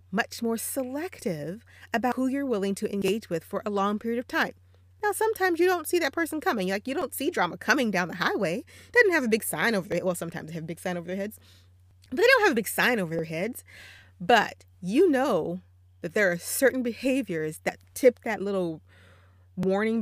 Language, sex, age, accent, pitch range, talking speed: English, female, 30-49, American, 160-245 Hz, 220 wpm